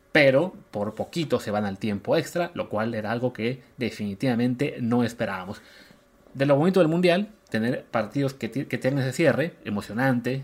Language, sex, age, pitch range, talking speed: Spanish, male, 30-49, 110-150 Hz, 165 wpm